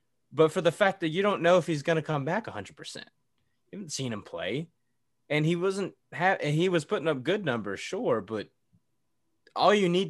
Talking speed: 225 wpm